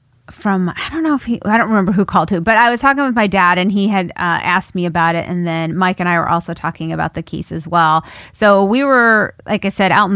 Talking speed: 285 wpm